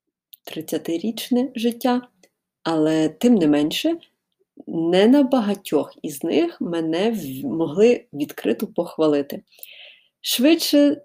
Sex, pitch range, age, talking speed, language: female, 160-240 Hz, 30-49, 85 wpm, Ukrainian